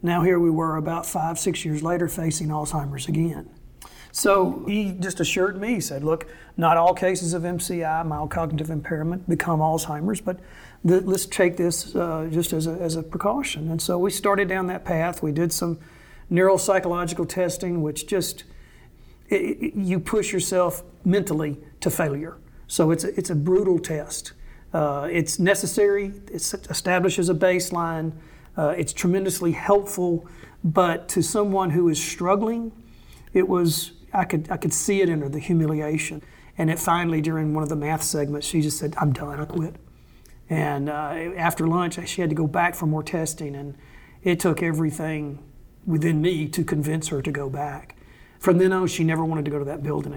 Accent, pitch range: American, 155-185 Hz